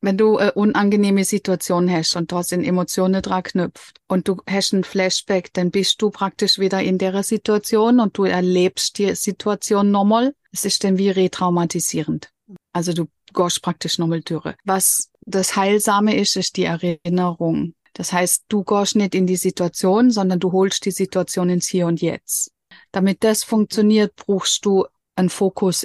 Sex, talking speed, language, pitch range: female, 170 wpm, German, 180-210 Hz